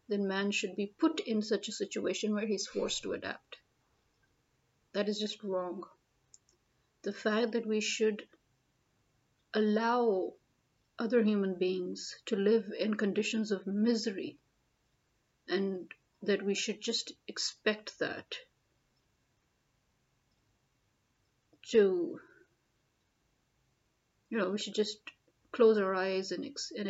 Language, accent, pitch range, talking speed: English, Indian, 185-225 Hz, 115 wpm